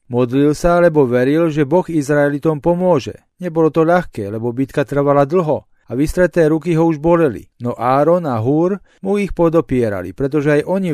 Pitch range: 135-170 Hz